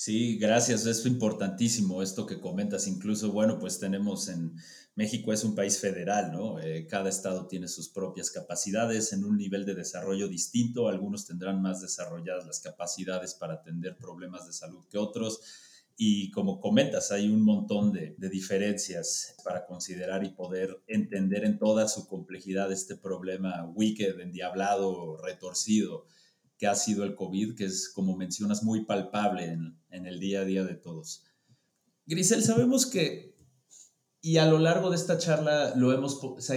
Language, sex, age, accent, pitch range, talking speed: Spanish, male, 30-49, Mexican, 95-125 Hz, 160 wpm